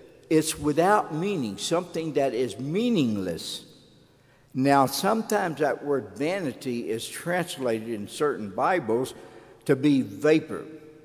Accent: American